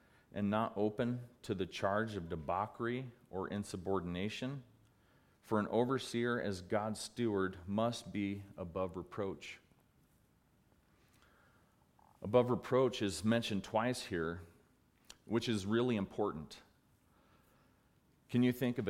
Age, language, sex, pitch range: 40-59, English, male, 90-110 Hz